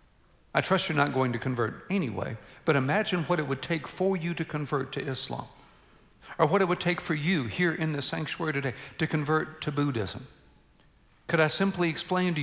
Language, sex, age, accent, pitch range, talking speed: English, male, 50-69, American, 125-160 Hz, 200 wpm